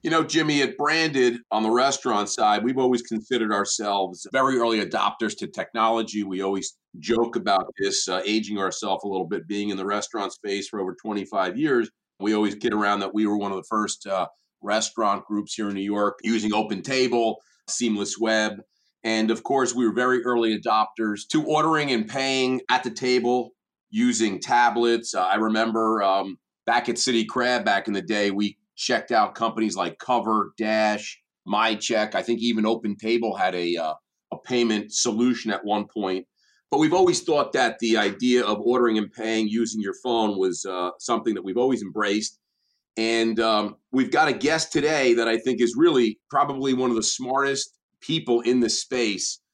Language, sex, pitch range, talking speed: English, male, 105-125 Hz, 185 wpm